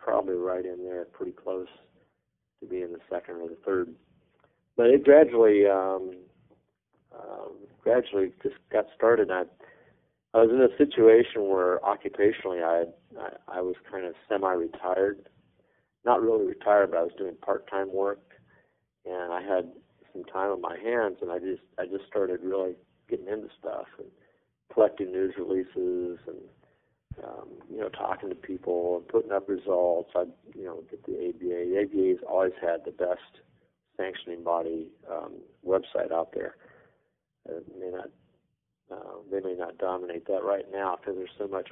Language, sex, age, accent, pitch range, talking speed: English, male, 40-59, American, 90-115 Hz, 160 wpm